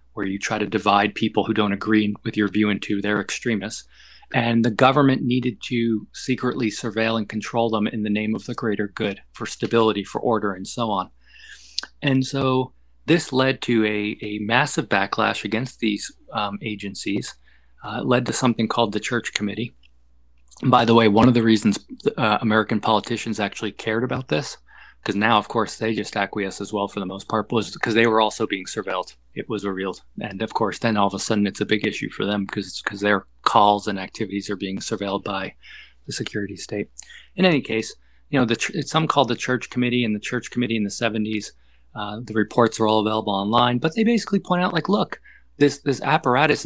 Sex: male